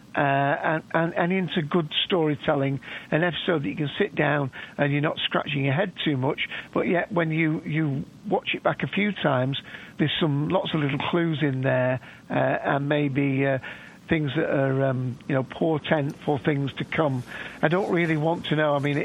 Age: 50-69